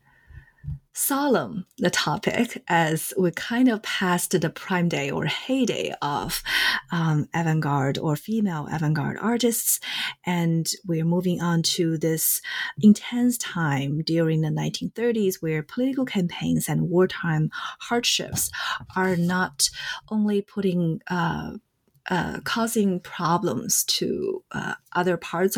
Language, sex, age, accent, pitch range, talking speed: English, female, 30-49, Chinese, 160-210 Hz, 115 wpm